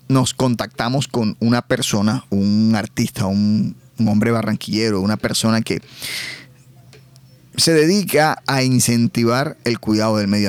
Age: 30-49